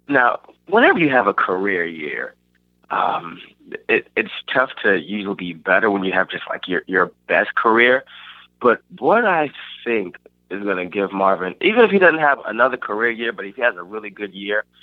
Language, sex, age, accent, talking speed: English, male, 20-39, American, 200 wpm